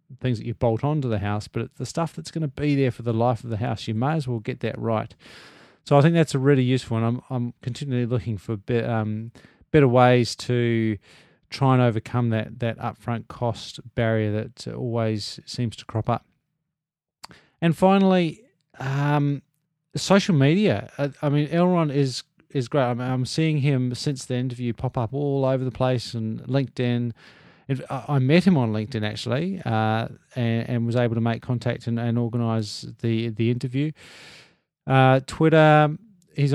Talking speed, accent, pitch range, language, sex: 185 wpm, Australian, 115-145 Hz, English, male